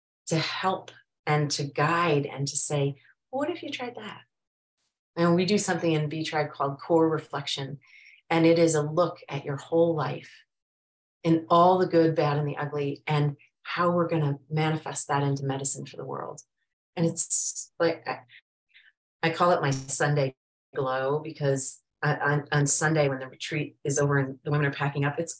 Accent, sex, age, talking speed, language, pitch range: American, female, 30-49, 180 wpm, English, 135-155 Hz